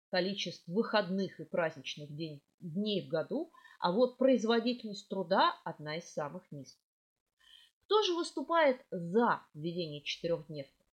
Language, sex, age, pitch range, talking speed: Russian, female, 30-49, 175-275 Hz, 115 wpm